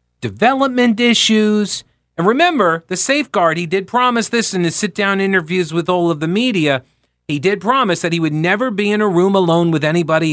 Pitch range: 135-200 Hz